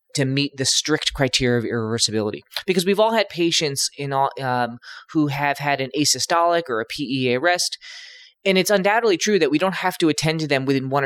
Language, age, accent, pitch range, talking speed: English, 20-39, American, 130-170 Hz, 195 wpm